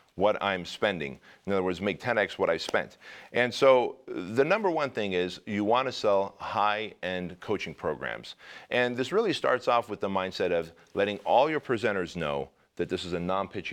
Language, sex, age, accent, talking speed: English, male, 40-59, American, 190 wpm